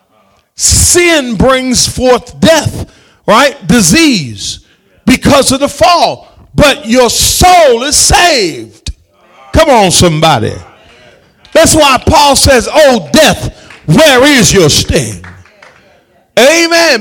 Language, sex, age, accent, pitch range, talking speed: English, male, 40-59, American, 210-285 Hz, 100 wpm